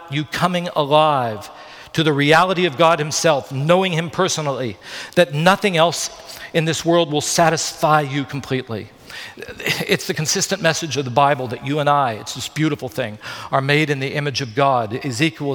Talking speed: 175 wpm